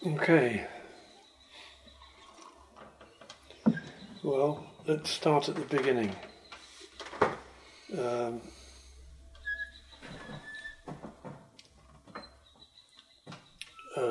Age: 60-79